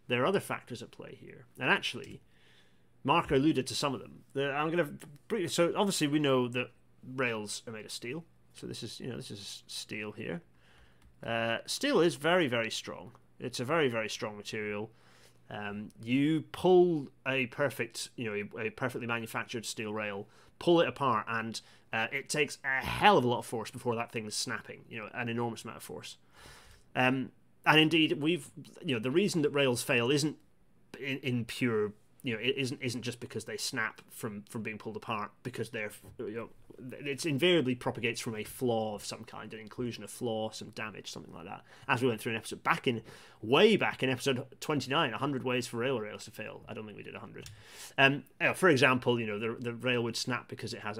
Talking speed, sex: 210 wpm, male